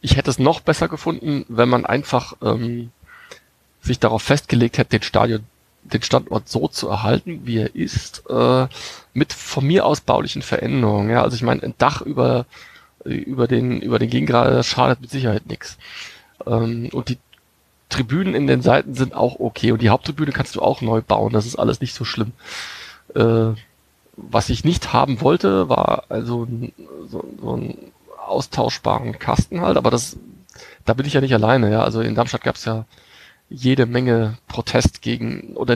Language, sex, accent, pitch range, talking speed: German, male, German, 115-130 Hz, 175 wpm